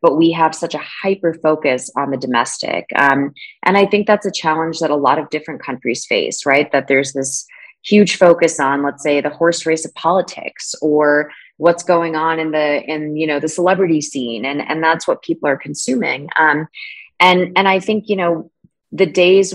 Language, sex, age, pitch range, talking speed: English, female, 20-39, 150-175 Hz, 205 wpm